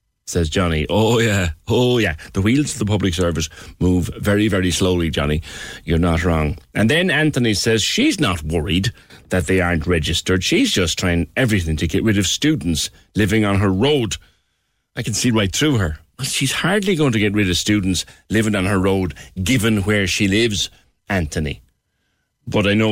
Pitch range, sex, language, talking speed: 90-120 Hz, male, English, 185 wpm